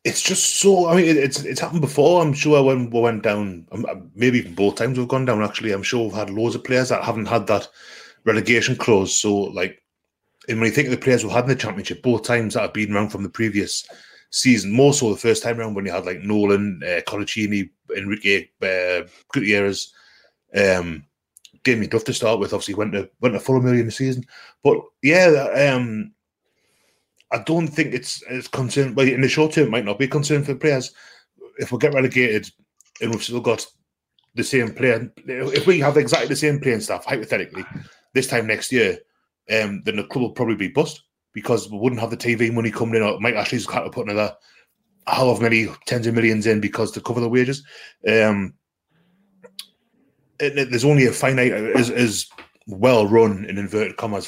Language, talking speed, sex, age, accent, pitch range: English, 210 wpm, male, 20-39, British, 105-135 Hz